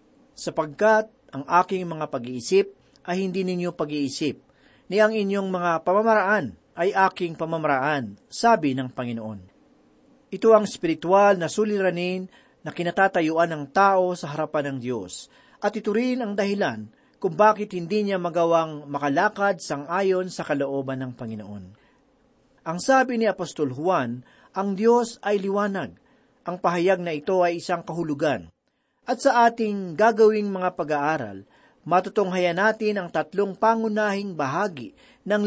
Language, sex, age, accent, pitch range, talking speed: Filipino, male, 40-59, native, 155-215 Hz, 130 wpm